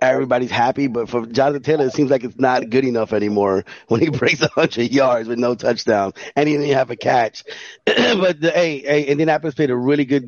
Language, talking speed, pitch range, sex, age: English, 215 wpm, 130-160 Hz, male, 30-49